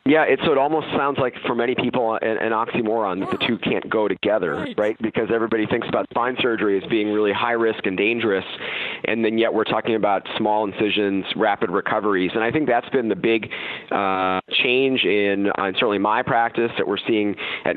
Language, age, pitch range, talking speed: English, 40-59, 100-115 Hz, 200 wpm